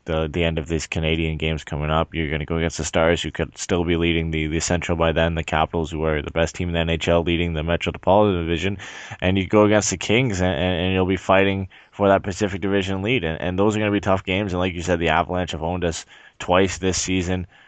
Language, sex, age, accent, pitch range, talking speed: English, male, 20-39, American, 85-95 Hz, 265 wpm